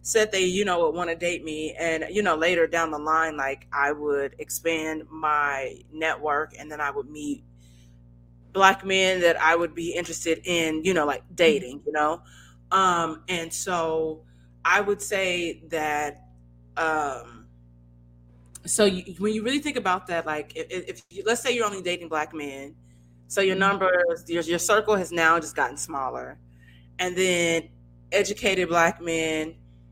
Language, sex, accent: English, female, American